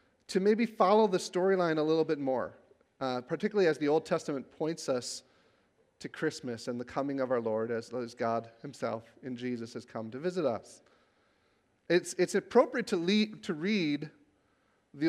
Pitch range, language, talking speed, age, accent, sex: 150-205 Hz, English, 165 wpm, 40-59, American, male